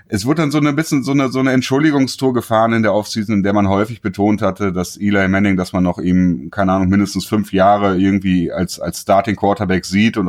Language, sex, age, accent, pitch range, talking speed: German, male, 30-49, German, 90-115 Hz, 235 wpm